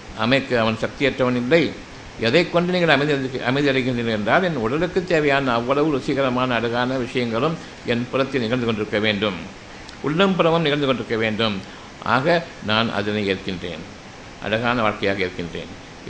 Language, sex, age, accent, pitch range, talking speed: Tamil, male, 60-79, native, 115-160 Hz, 125 wpm